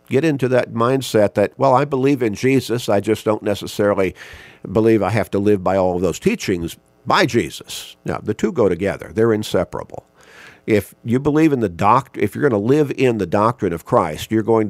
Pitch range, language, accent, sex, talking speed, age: 95-120 Hz, English, American, male, 210 wpm, 50-69